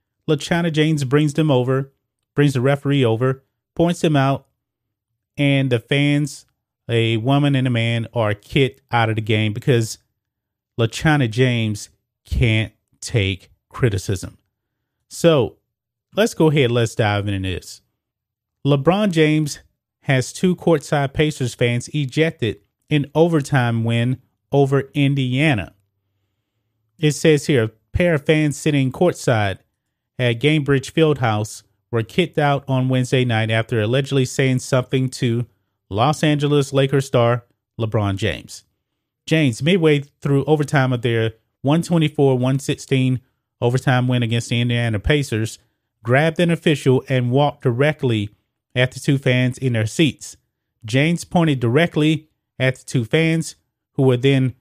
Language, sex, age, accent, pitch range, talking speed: English, male, 30-49, American, 115-145 Hz, 130 wpm